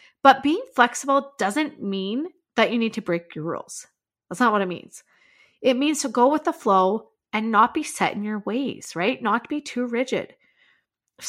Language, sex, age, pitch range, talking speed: English, female, 30-49, 200-260 Hz, 195 wpm